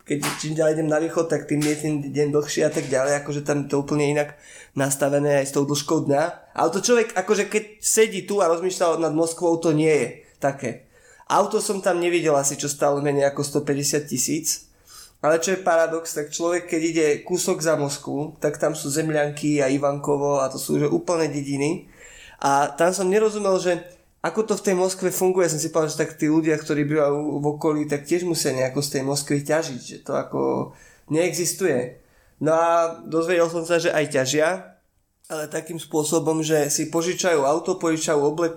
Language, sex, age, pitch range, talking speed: Slovak, male, 20-39, 145-170 Hz, 200 wpm